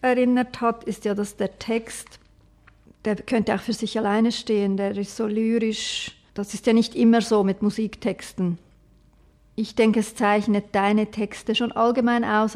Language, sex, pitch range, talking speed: German, female, 195-230 Hz, 165 wpm